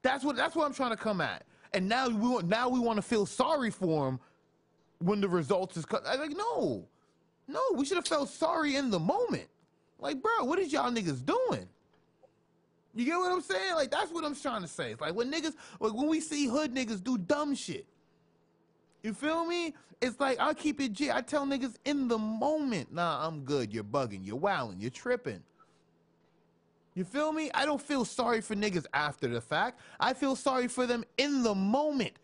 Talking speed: 210 wpm